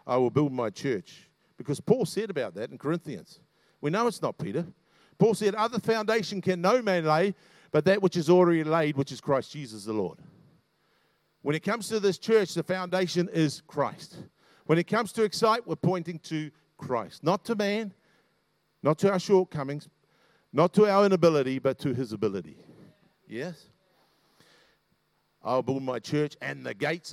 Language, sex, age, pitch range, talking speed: English, male, 50-69, 150-200 Hz, 175 wpm